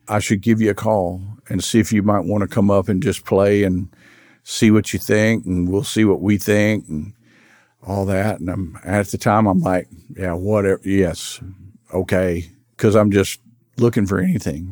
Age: 50-69